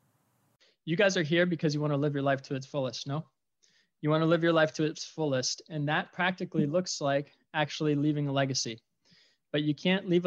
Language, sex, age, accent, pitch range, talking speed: English, male, 20-39, American, 135-155 Hz, 215 wpm